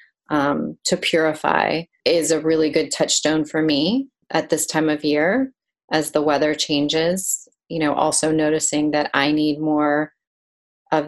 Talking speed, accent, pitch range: 150 wpm, American, 145-175 Hz